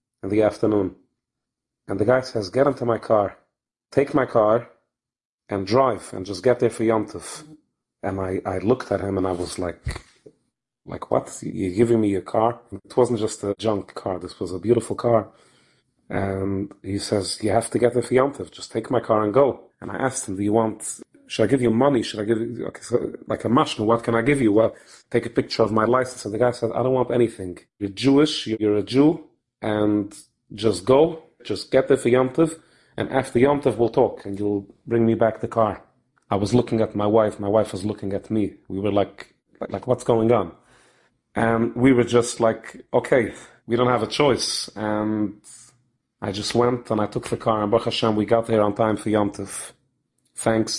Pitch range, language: 105-120 Hz, English